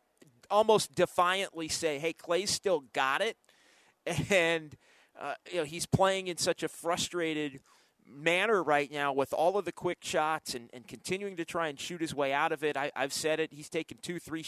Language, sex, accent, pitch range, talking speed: English, male, American, 135-165 Hz, 195 wpm